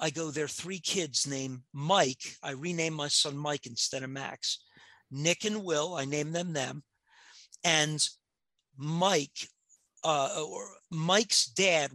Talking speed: 140 wpm